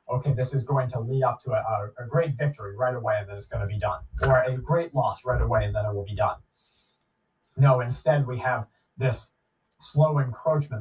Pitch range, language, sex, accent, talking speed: 115-140 Hz, English, male, American, 220 wpm